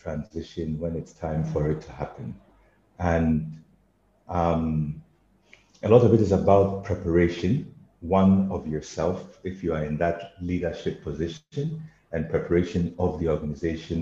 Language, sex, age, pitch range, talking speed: English, male, 50-69, 80-100 Hz, 135 wpm